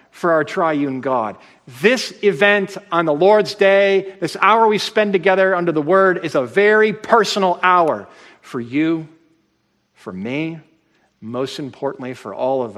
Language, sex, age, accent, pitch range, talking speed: English, male, 50-69, American, 125-175 Hz, 150 wpm